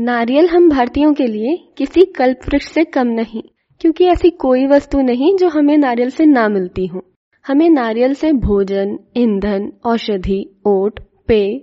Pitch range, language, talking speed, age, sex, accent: 215-290 Hz, English, 160 wpm, 20-39, female, Indian